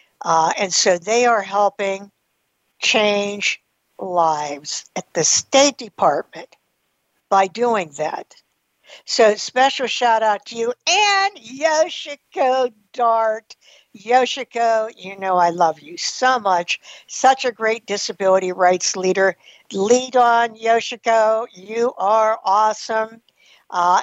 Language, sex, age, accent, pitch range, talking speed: English, female, 60-79, American, 190-245 Hz, 110 wpm